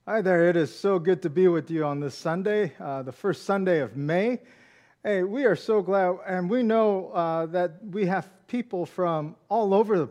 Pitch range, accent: 145-190 Hz, American